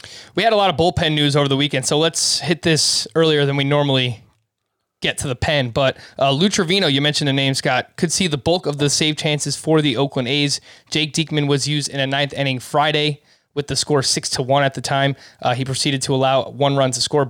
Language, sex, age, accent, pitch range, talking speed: English, male, 20-39, American, 135-165 Hz, 245 wpm